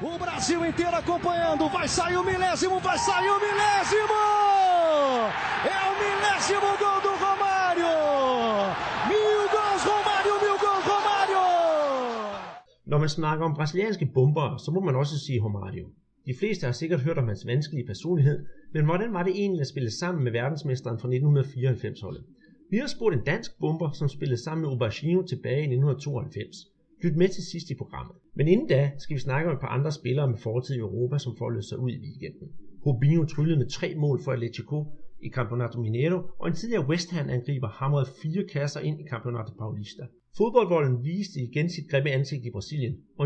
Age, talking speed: 30-49, 145 wpm